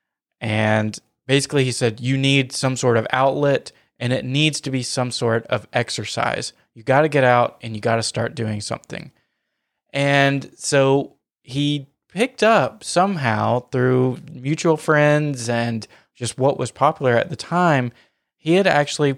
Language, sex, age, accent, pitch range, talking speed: English, male, 20-39, American, 120-145 Hz, 160 wpm